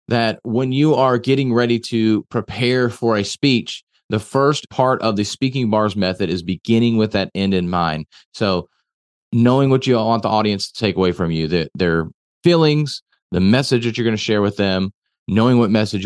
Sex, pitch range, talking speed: male, 95-115 Hz, 195 wpm